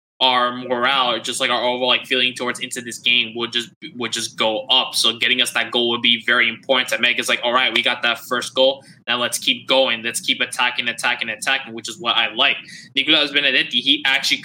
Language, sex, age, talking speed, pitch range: English, male, 20-39, 230 wpm, 120-130 Hz